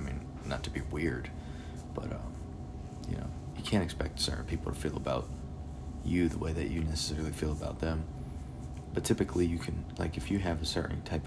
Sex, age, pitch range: male, 30-49, 75-85 Hz